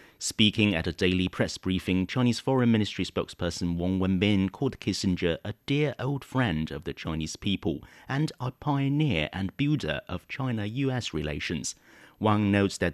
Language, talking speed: English, 155 wpm